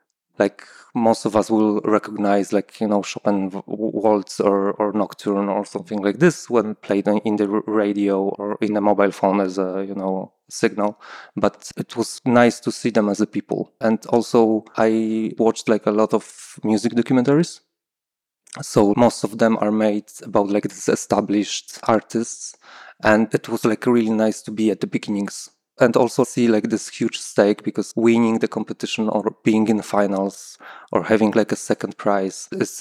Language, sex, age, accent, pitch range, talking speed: English, male, 20-39, Polish, 100-110 Hz, 180 wpm